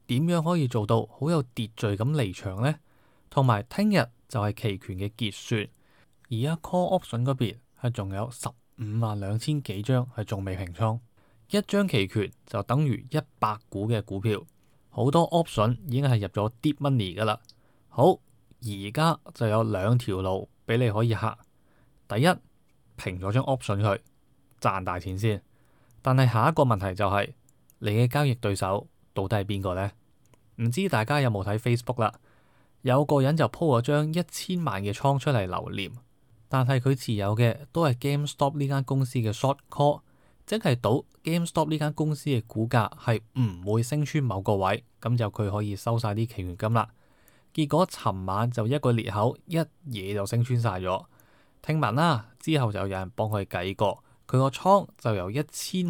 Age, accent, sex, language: 20-39, native, male, Chinese